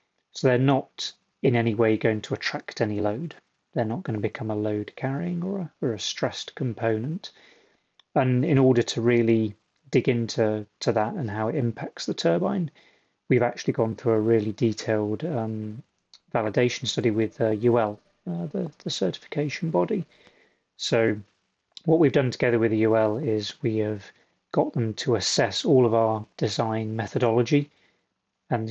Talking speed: 165 wpm